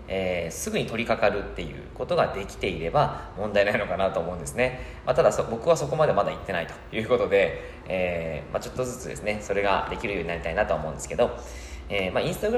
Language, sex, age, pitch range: Japanese, male, 20-39, 100-155 Hz